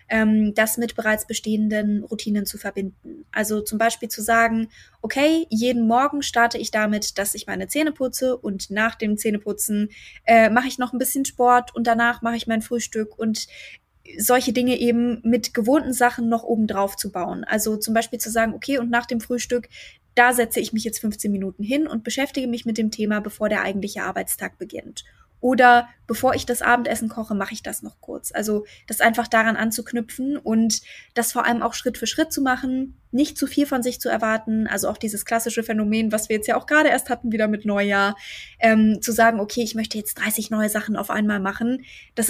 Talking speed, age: 205 wpm, 20-39